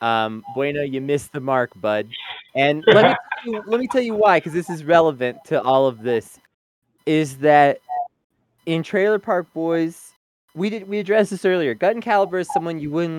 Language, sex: English, male